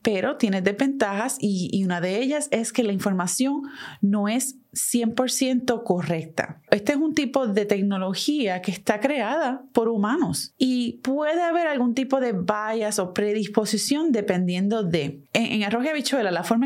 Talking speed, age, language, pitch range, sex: 160 wpm, 30-49, Spanish, 200-260 Hz, female